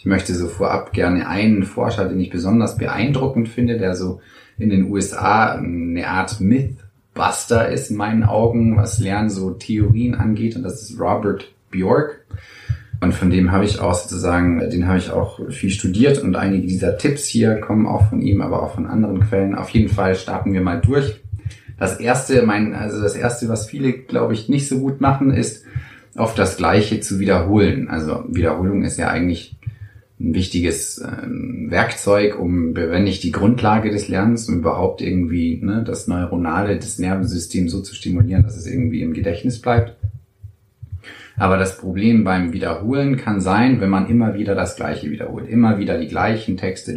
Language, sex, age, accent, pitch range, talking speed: German, male, 30-49, German, 95-115 Hz, 180 wpm